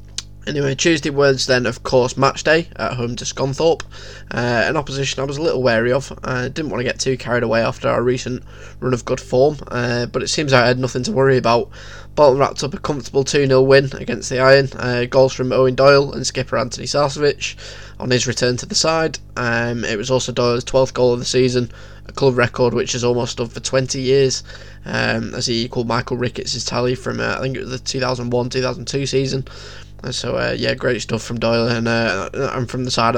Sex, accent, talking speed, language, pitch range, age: male, British, 220 wpm, English, 115-130 Hz, 10-29